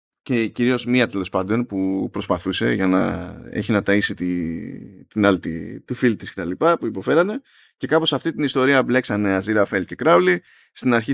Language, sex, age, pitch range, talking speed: Greek, male, 20-39, 95-125 Hz, 185 wpm